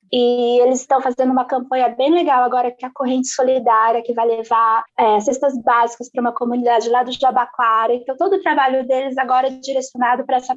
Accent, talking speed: Brazilian, 200 wpm